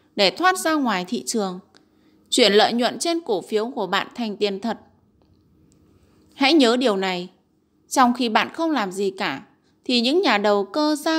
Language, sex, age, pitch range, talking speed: Vietnamese, female, 20-39, 210-300 Hz, 180 wpm